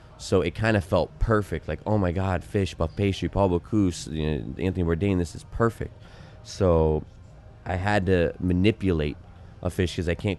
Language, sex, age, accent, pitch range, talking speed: English, male, 20-39, American, 80-95 Hz, 185 wpm